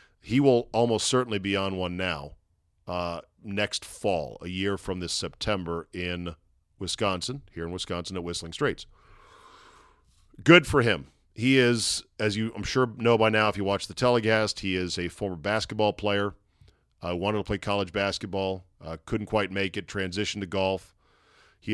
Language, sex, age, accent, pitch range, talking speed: English, male, 40-59, American, 95-110 Hz, 170 wpm